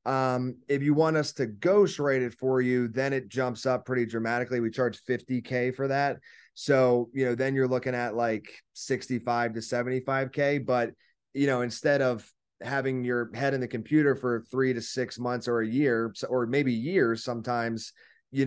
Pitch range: 115-130 Hz